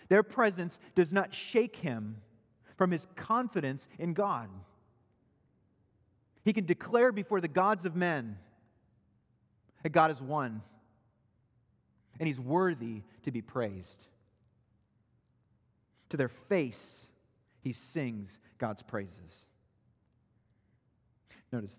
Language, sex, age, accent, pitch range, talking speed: English, male, 40-59, American, 110-160 Hz, 100 wpm